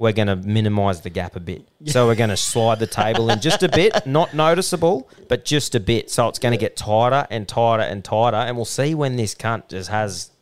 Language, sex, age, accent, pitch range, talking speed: English, male, 30-49, Australian, 120-180 Hz, 250 wpm